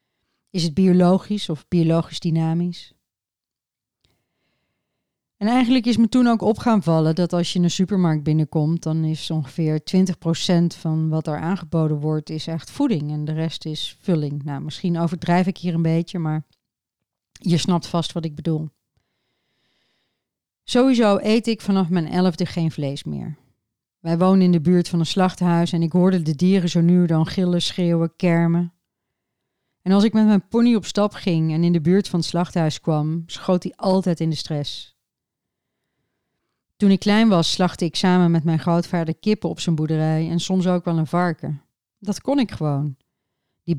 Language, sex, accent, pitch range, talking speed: Dutch, female, Dutch, 160-185 Hz, 175 wpm